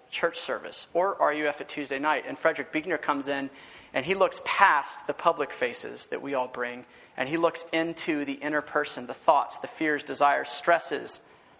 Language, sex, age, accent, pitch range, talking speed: English, male, 30-49, American, 150-185 Hz, 185 wpm